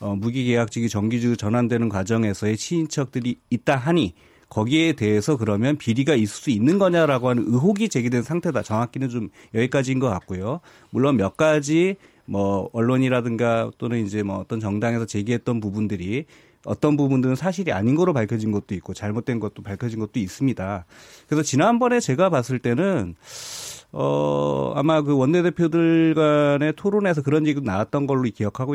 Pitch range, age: 110-155 Hz, 30-49